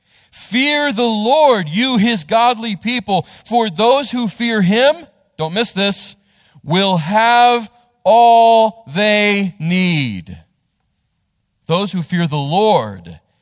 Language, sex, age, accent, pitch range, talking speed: English, male, 40-59, American, 155-215 Hz, 110 wpm